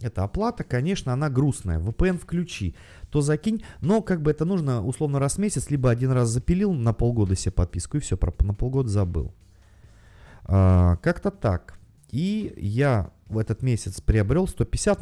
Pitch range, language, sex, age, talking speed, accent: 95-140 Hz, Russian, male, 30-49, 165 wpm, native